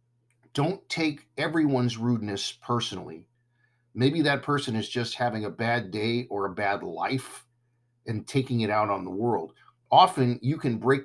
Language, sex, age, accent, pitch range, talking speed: English, male, 50-69, American, 110-125 Hz, 160 wpm